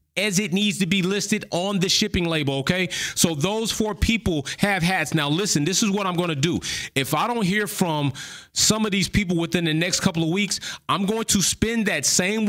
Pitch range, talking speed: 135-190 Hz, 225 wpm